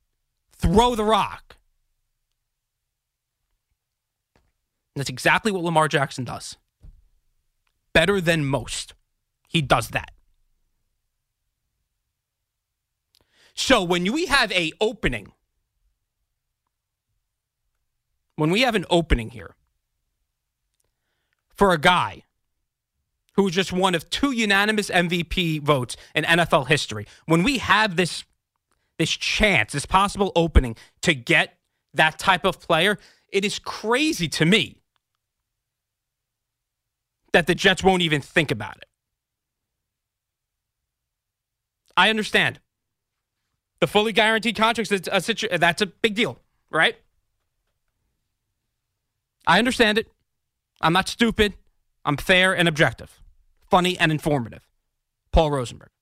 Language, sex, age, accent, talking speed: English, male, 30-49, American, 105 wpm